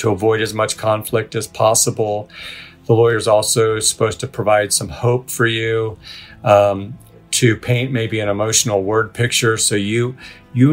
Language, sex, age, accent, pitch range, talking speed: English, male, 40-59, American, 105-125 Hz, 160 wpm